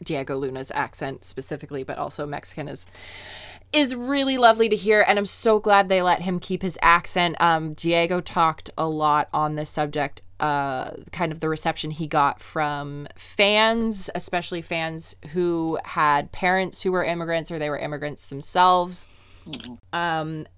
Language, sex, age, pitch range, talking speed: English, female, 20-39, 145-180 Hz, 155 wpm